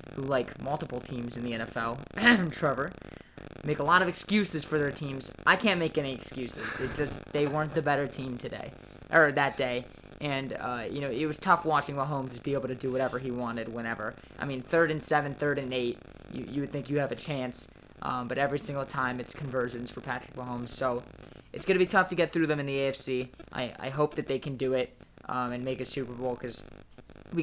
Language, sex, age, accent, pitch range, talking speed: English, male, 20-39, American, 125-145 Hz, 230 wpm